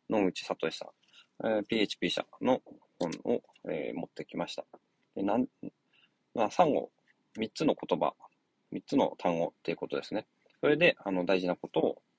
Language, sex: Japanese, male